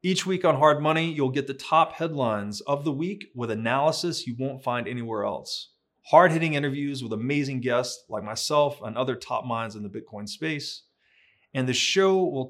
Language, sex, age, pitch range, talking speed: English, male, 30-49, 115-150 Hz, 185 wpm